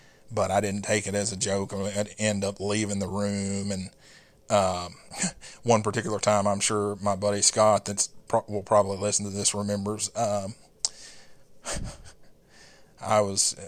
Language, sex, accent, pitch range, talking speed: English, male, American, 100-105 Hz, 145 wpm